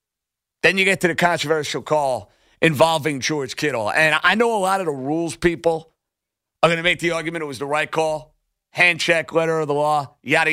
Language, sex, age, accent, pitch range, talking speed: English, male, 40-59, American, 165-230 Hz, 210 wpm